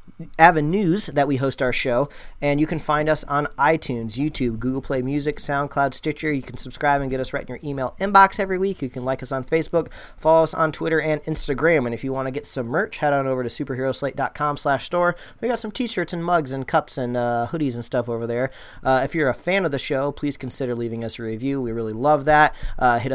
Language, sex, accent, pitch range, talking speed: English, male, American, 125-155 Hz, 240 wpm